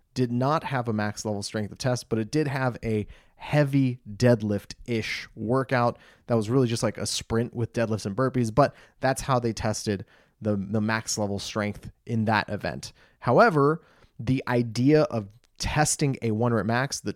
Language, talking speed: English, 175 wpm